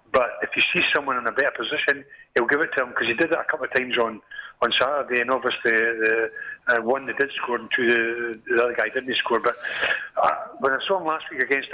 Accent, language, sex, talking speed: British, English, male, 260 wpm